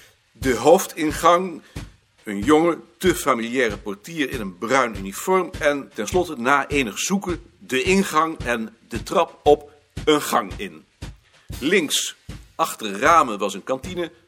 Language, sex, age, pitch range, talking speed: Dutch, male, 60-79, 120-170 Hz, 130 wpm